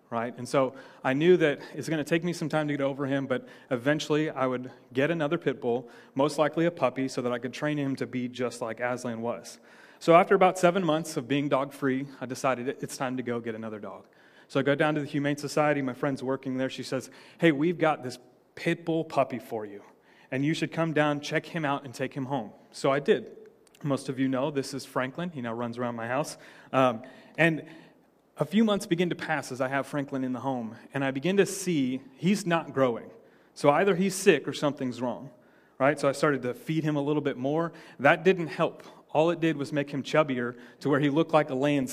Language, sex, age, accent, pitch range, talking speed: English, male, 30-49, American, 130-160 Hz, 240 wpm